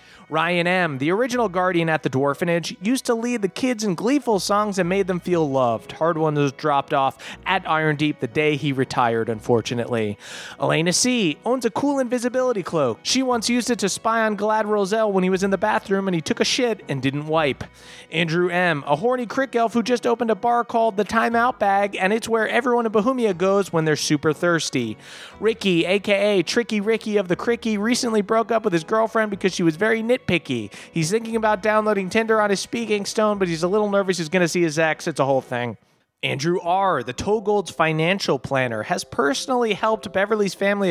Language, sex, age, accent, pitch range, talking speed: English, male, 30-49, American, 165-225 Hz, 215 wpm